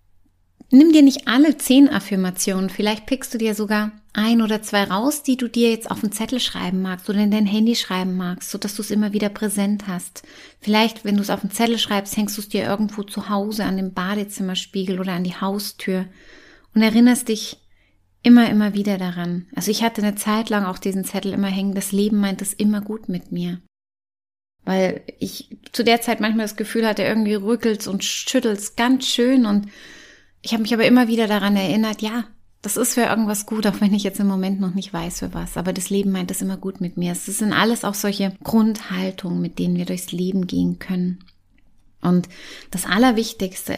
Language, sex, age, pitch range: German, female, 30-49, 185-220 Hz